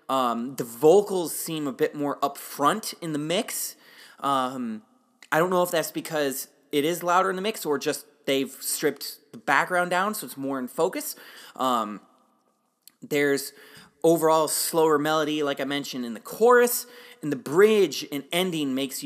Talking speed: 165 wpm